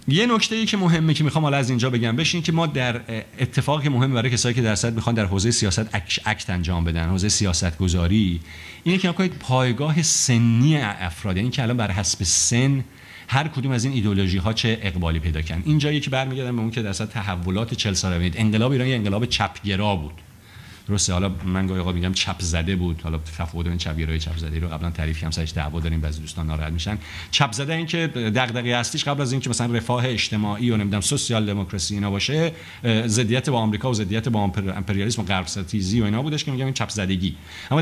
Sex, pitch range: male, 95-125 Hz